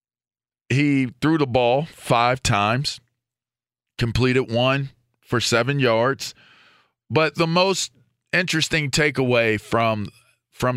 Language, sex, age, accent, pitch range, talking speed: English, male, 40-59, American, 105-125 Hz, 100 wpm